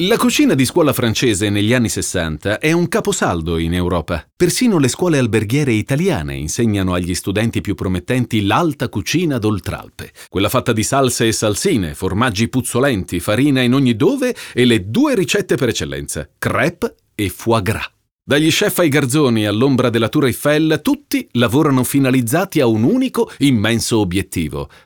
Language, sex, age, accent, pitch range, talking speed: Italian, male, 40-59, native, 95-145 Hz, 155 wpm